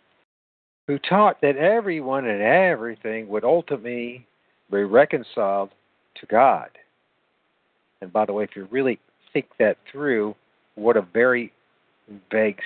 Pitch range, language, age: 105-145 Hz, English, 50-69